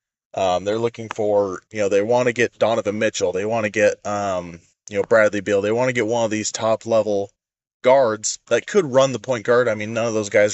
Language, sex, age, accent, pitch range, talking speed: English, male, 20-39, American, 105-135 Hz, 245 wpm